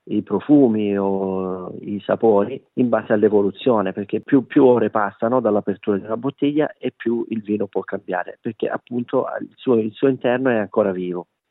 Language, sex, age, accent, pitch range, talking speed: Italian, male, 40-59, native, 100-115 Hz, 160 wpm